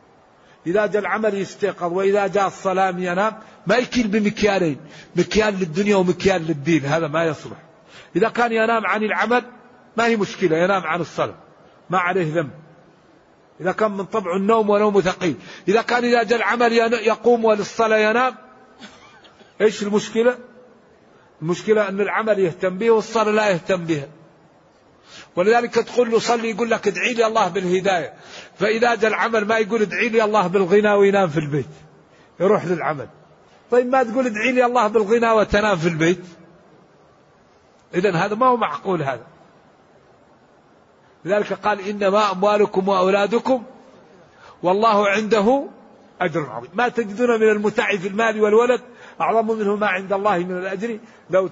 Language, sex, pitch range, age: Arabic, male, 180-225 Hz, 50-69